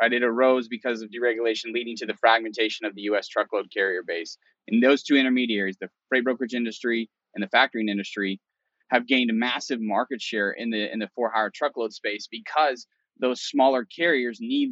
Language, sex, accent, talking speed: English, male, American, 190 wpm